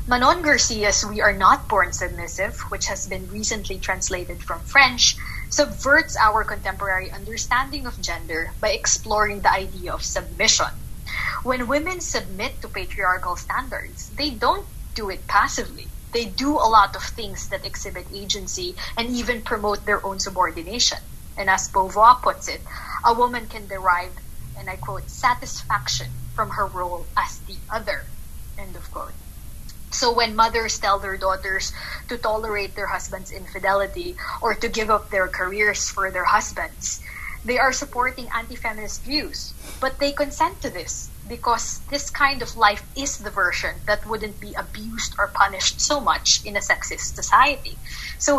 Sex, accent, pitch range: female, Filipino, 195-265 Hz